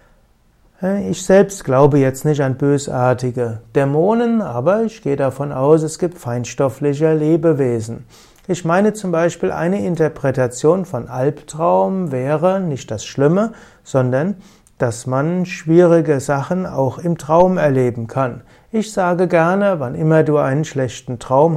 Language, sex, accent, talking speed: German, male, German, 135 wpm